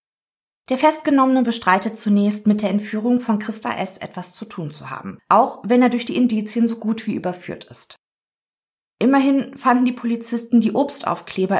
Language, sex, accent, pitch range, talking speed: German, female, German, 190-240 Hz, 165 wpm